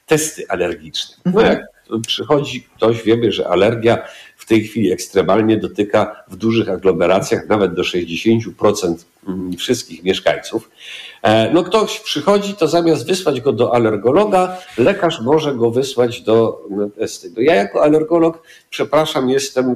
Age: 50-69